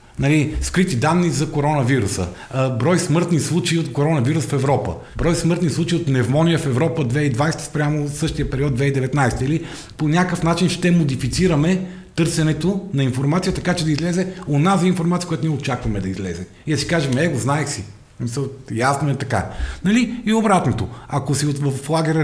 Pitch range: 130-165 Hz